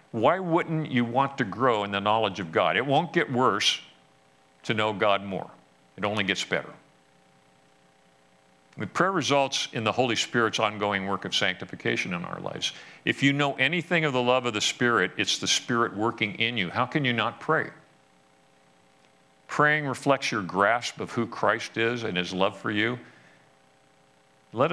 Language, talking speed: English, 175 wpm